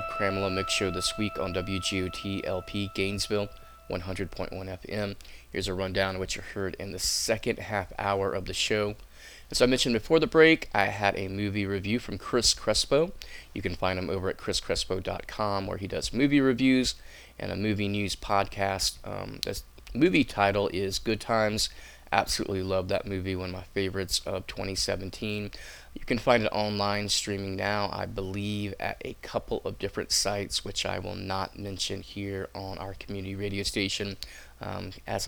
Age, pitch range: 20-39, 95-105 Hz